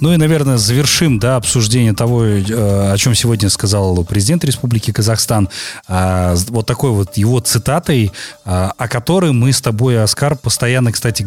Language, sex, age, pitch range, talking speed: Russian, male, 30-49, 100-130 Hz, 140 wpm